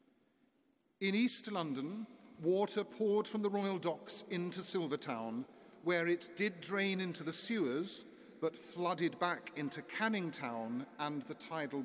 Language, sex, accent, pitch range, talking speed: English, male, British, 155-220 Hz, 135 wpm